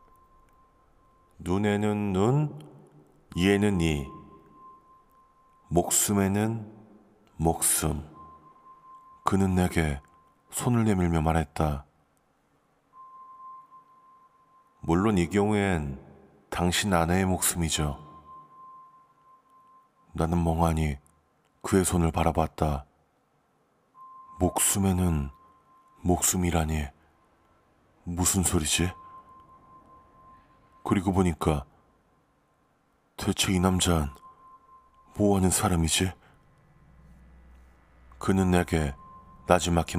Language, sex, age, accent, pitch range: Korean, male, 40-59, native, 80-105 Hz